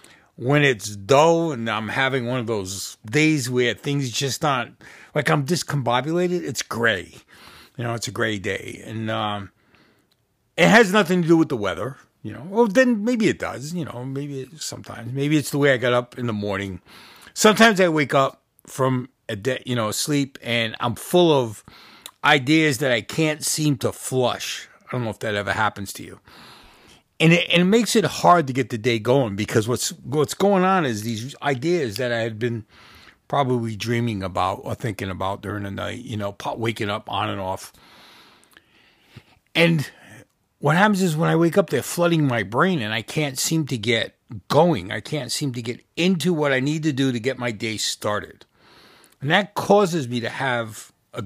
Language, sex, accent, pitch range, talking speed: English, male, American, 115-160 Hz, 195 wpm